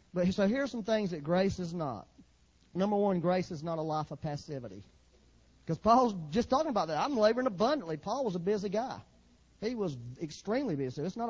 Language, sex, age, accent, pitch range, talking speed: English, male, 40-59, American, 145-215 Hz, 195 wpm